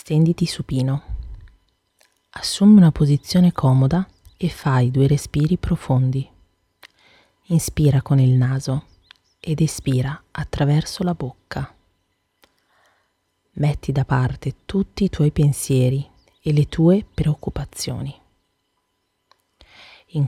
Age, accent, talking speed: 30-49, native, 95 wpm